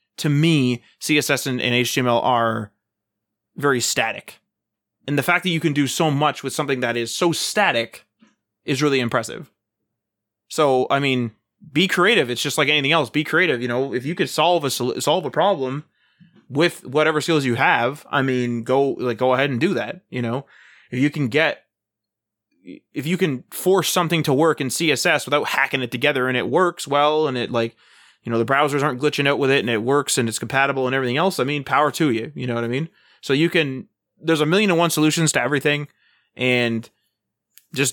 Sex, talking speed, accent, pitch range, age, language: male, 205 wpm, American, 125-155 Hz, 20-39, English